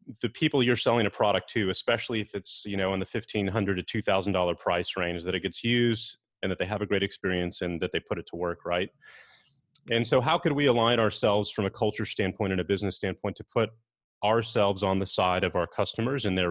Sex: male